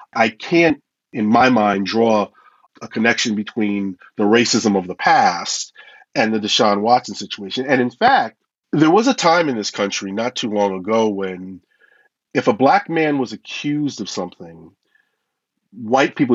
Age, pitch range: 40-59, 105-140 Hz